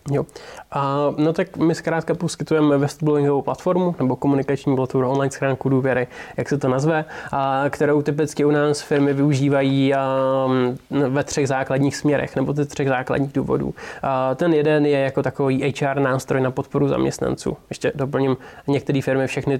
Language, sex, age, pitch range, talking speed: Czech, male, 20-39, 135-145 Hz, 160 wpm